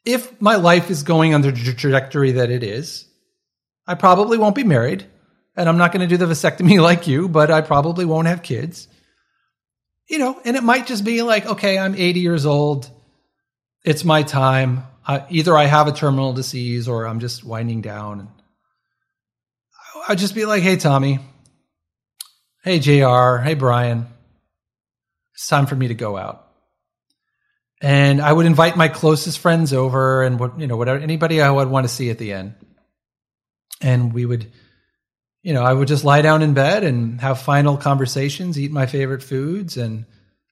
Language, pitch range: English, 125-170 Hz